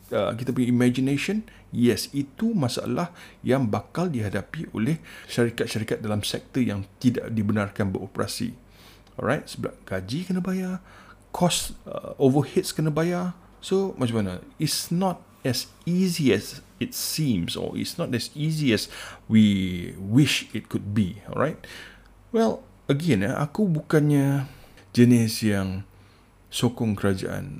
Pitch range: 100-140 Hz